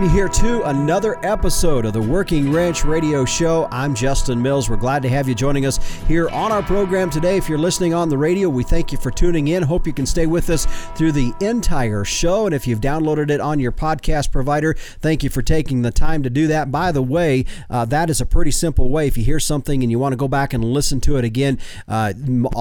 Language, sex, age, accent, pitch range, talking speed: English, male, 40-59, American, 130-165 Hz, 240 wpm